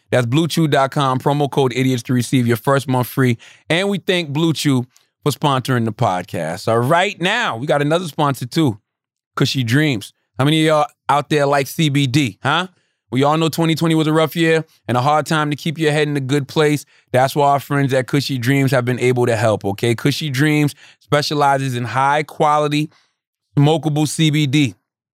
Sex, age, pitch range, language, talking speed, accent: male, 30-49, 130-155 Hz, English, 185 wpm, American